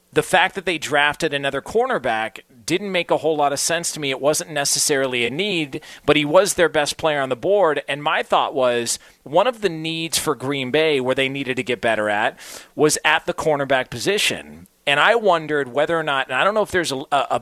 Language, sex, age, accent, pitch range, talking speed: English, male, 40-59, American, 130-165 Hz, 230 wpm